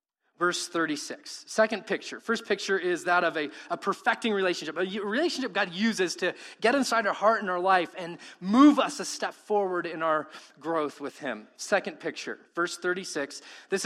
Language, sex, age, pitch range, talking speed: English, male, 30-49, 170-245 Hz, 180 wpm